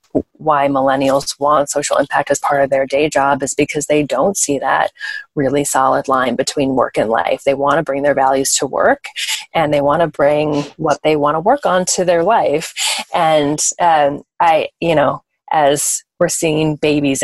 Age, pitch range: 30-49, 140-170 Hz